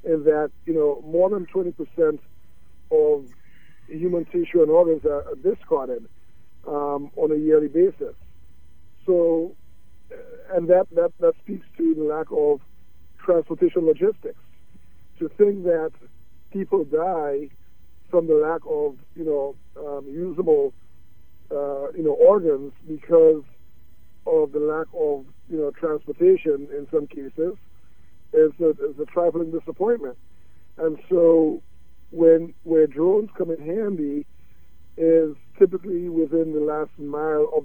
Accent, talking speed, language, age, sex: American, 125 wpm, English, 60-79, male